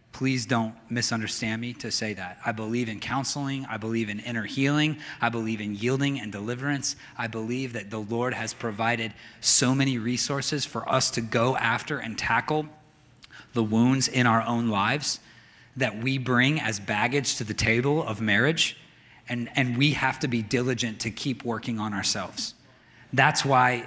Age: 30-49